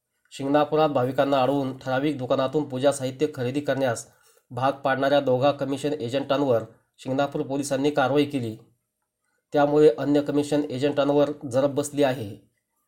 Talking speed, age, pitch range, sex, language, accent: 115 wpm, 30-49, 130-150 Hz, male, Marathi, native